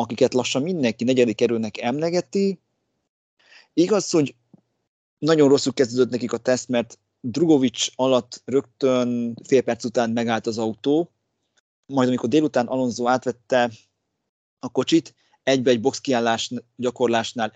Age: 30-49